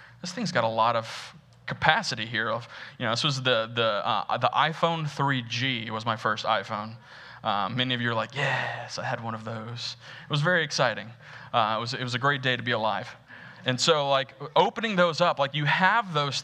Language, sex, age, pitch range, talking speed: English, male, 20-39, 125-160 Hz, 225 wpm